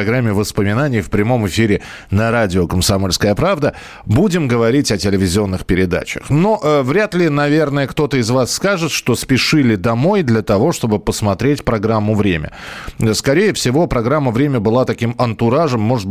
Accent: native